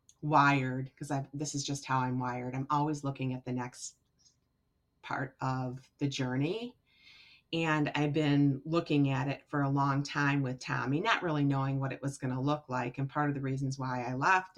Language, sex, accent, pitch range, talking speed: English, female, American, 140-170 Hz, 200 wpm